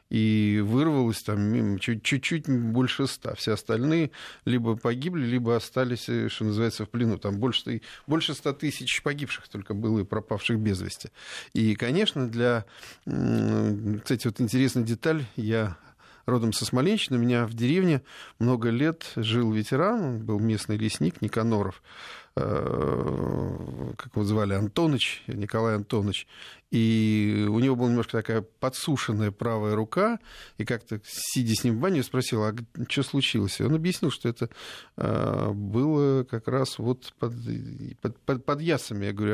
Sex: male